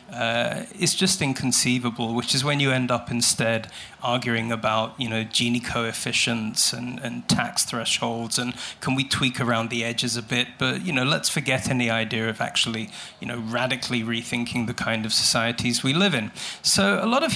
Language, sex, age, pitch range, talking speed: English, male, 30-49, 115-140 Hz, 185 wpm